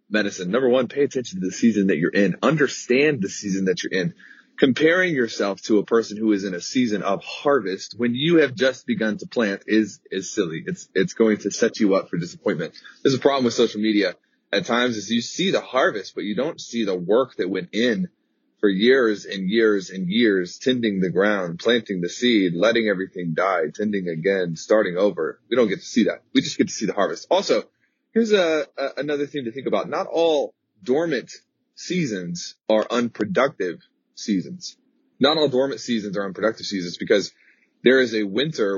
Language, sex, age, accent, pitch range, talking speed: English, male, 30-49, American, 100-130 Hz, 200 wpm